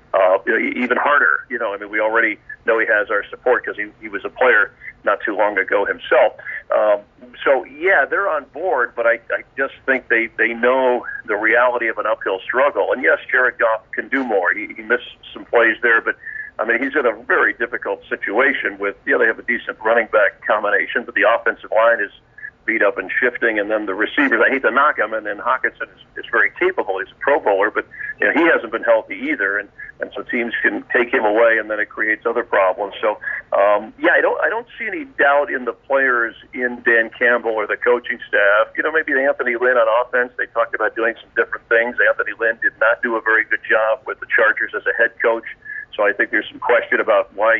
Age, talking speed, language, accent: 50-69, 230 wpm, English, American